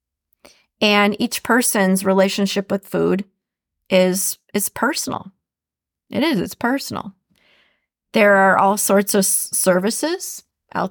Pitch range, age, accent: 180-205 Hz, 30-49, American